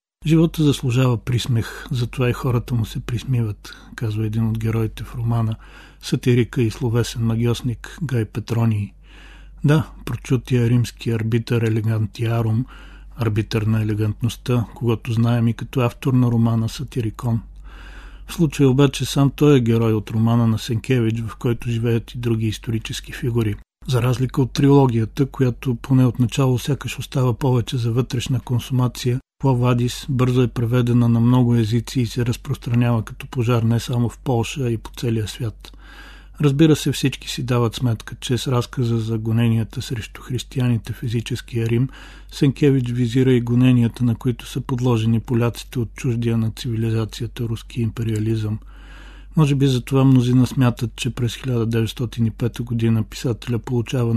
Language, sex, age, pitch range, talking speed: Bulgarian, male, 40-59, 115-130 Hz, 150 wpm